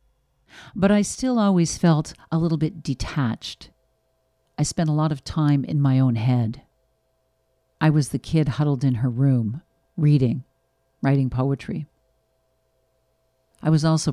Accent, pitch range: American, 130-155 Hz